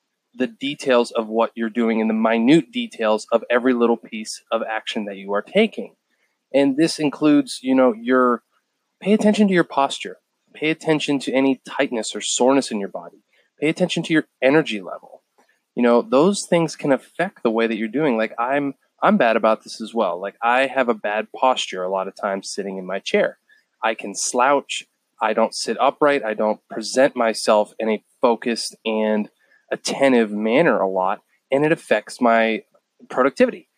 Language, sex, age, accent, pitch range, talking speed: English, male, 20-39, American, 110-140 Hz, 180 wpm